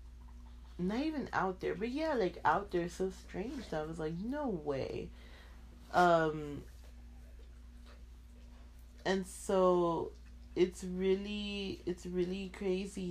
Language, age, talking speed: English, 30-49, 115 wpm